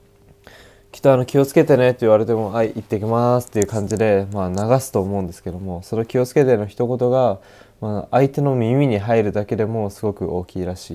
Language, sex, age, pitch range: Japanese, male, 20-39, 100-115 Hz